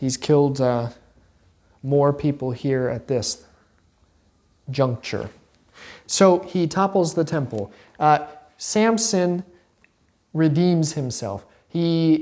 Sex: male